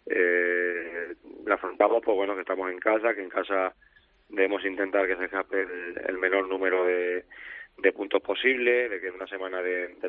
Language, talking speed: Spanish, 190 wpm